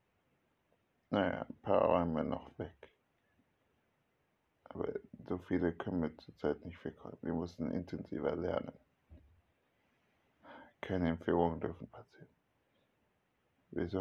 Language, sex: German, male